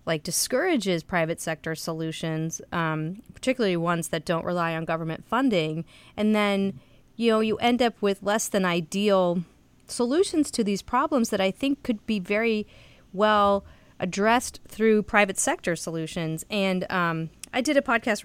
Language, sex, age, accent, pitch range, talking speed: English, female, 30-49, American, 165-210 Hz, 155 wpm